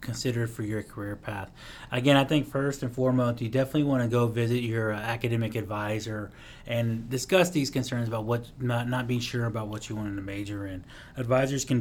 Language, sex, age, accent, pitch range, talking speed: English, male, 30-49, American, 110-125 Hz, 205 wpm